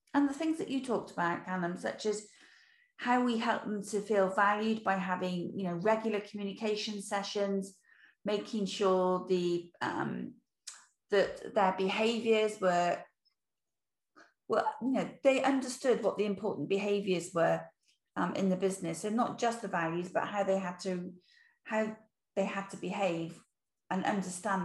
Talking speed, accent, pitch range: 155 wpm, British, 185-225 Hz